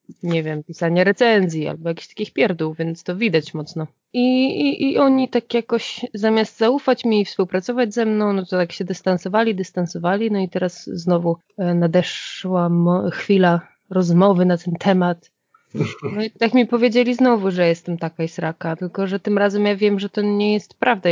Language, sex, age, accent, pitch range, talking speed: Polish, female, 20-39, native, 165-205 Hz, 180 wpm